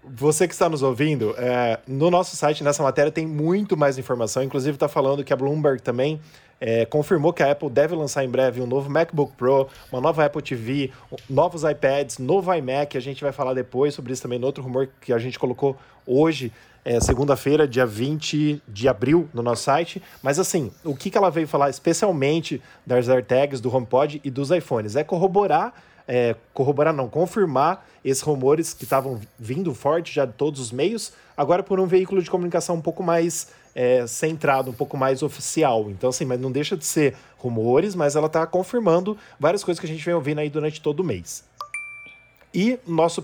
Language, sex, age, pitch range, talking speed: Portuguese, male, 20-39, 135-175 Hz, 190 wpm